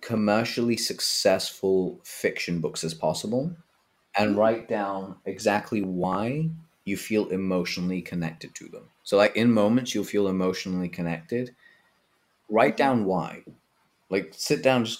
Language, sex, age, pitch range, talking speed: English, male, 30-49, 85-110 Hz, 130 wpm